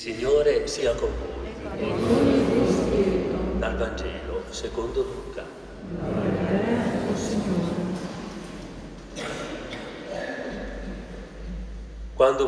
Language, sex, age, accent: Italian, male, 40-59, native